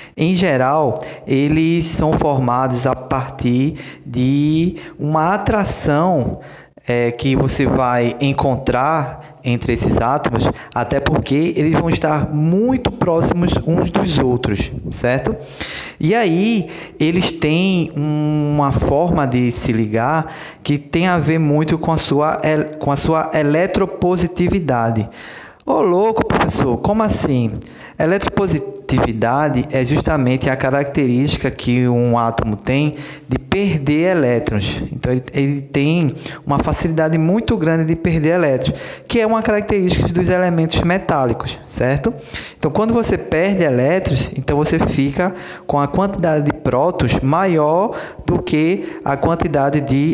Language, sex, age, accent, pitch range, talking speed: Portuguese, male, 20-39, Brazilian, 130-165 Hz, 120 wpm